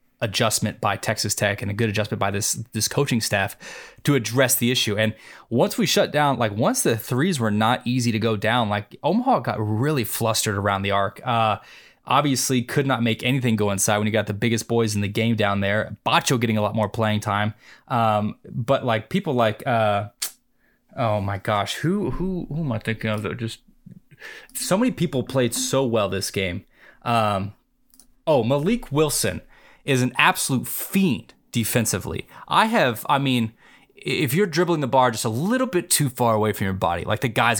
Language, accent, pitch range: English, American, 105-135 Hz